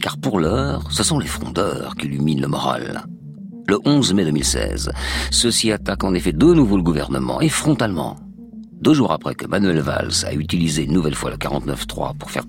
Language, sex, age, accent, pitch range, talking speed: French, male, 50-69, French, 75-120 Hz, 190 wpm